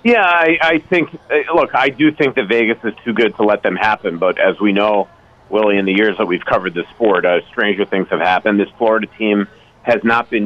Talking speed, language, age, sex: 235 wpm, English, 40-59, male